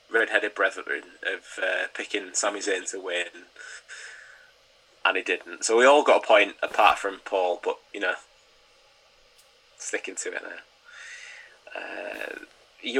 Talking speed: 130 wpm